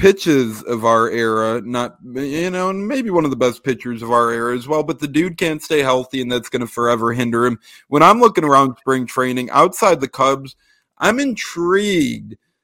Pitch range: 125-160 Hz